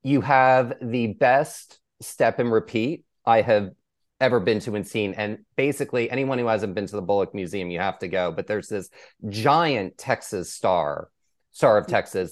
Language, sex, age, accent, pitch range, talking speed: English, male, 30-49, American, 95-115 Hz, 180 wpm